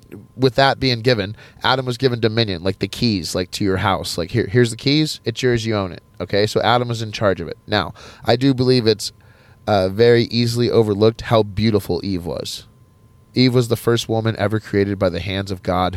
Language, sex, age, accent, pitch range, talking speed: English, male, 30-49, American, 100-115 Hz, 220 wpm